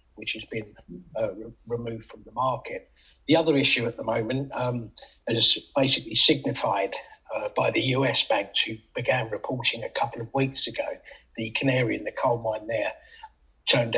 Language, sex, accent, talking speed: English, male, British, 165 wpm